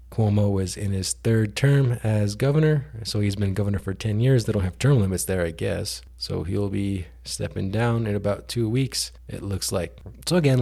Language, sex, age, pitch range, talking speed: English, male, 20-39, 95-115 Hz, 210 wpm